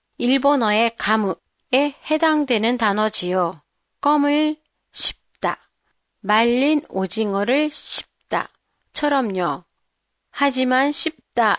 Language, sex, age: Japanese, female, 40-59